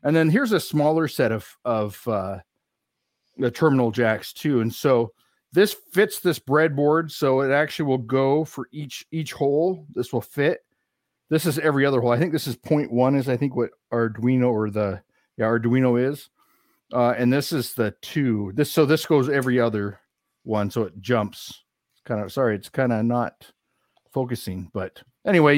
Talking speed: 185 wpm